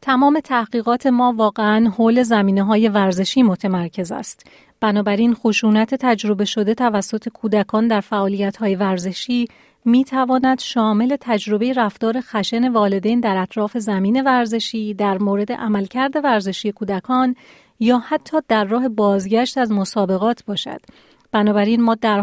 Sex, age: female, 40-59